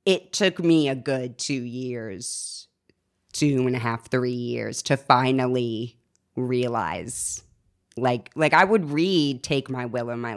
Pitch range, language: 125-155 Hz, English